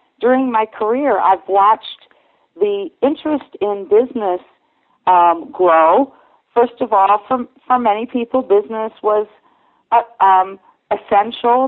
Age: 50-69